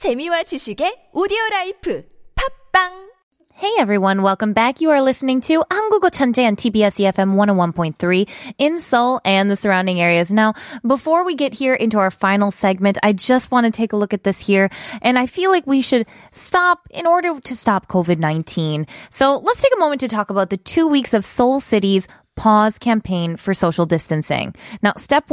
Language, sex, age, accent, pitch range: Korean, female, 20-39, American, 195-275 Hz